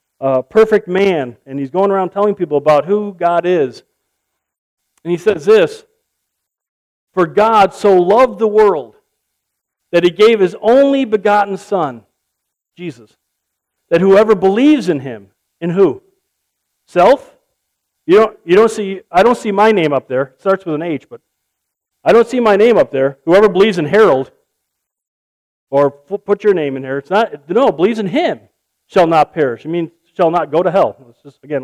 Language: English